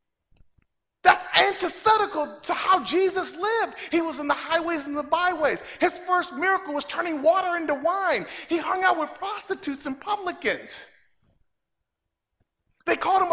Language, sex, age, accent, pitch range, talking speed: English, male, 50-69, American, 220-345 Hz, 145 wpm